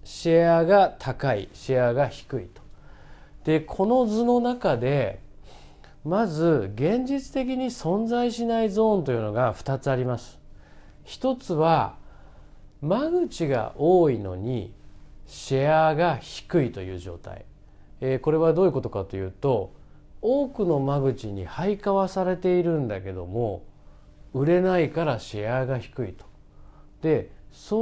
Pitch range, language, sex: 110-180 Hz, Japanese, male